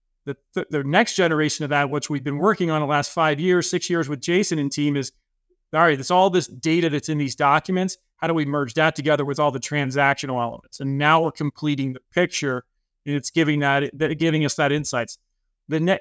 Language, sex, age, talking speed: English, male, 30-49, 230 wpm